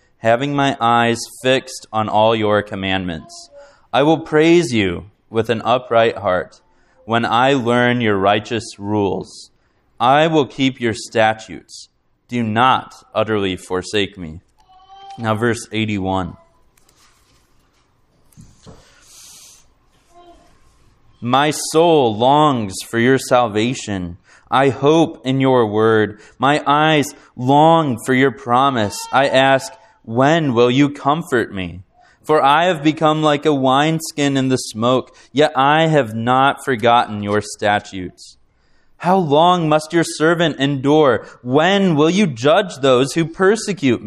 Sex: male